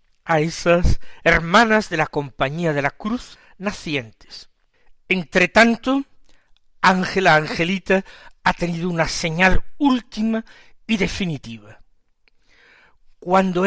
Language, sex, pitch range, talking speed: Spanish, male, 165-225 Hz, 90 wpm